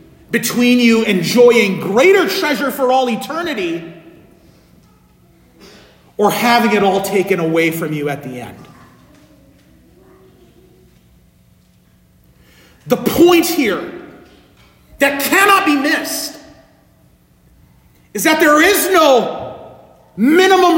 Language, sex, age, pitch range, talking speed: English, male, 40-59, 210-315 Hz, 90 wpm